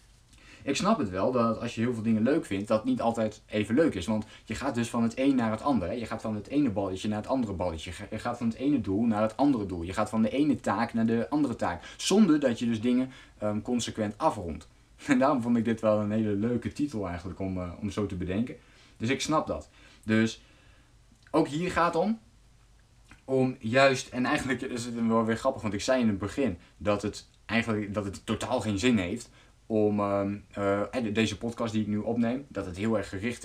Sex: male